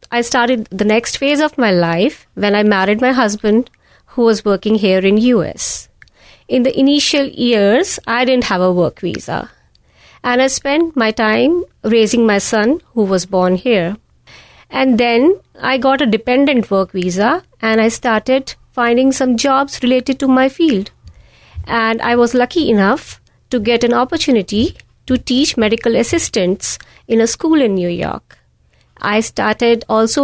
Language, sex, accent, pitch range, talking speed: English, female, Indian, 210-260 Hz, 160 wpm